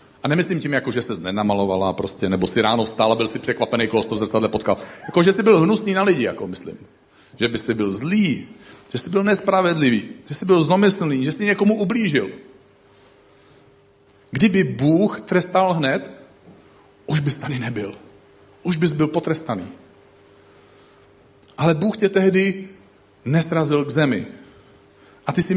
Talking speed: 155 wpm